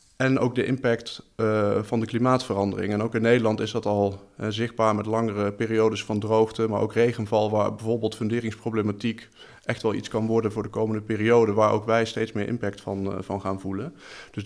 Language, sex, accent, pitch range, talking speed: Dutch, male, Dutch, 105-115 Hz, 205 wpm